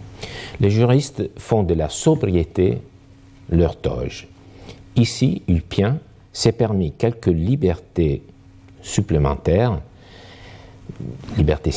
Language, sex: French, male